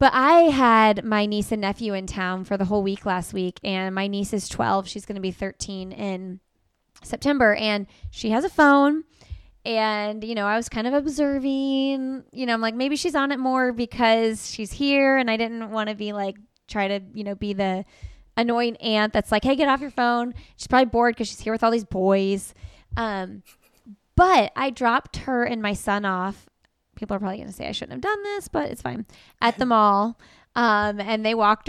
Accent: American